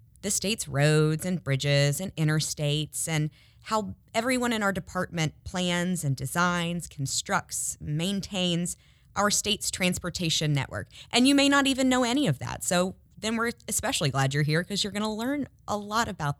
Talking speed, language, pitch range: 165 wpm, English, 140-180 Hz